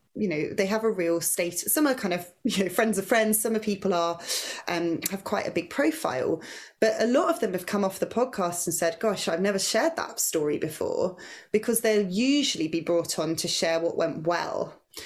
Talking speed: 225 wpm